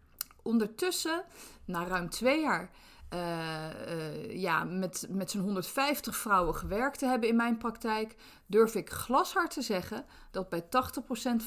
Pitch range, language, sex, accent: 180-245 Hz, Dutch, female, Dutch